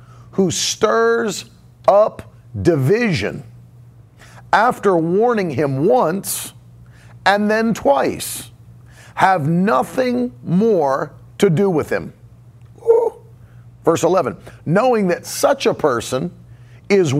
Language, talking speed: English, 90 wpm